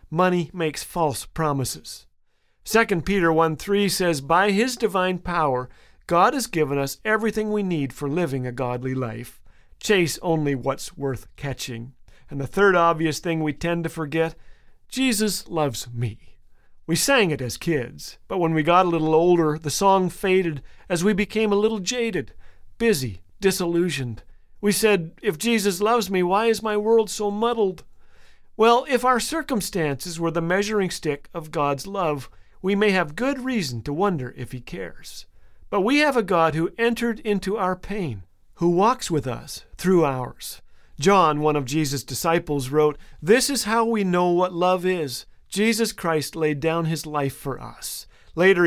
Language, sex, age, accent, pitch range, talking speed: English, male, 50-69, American, 145-205 Hz, 170 wpm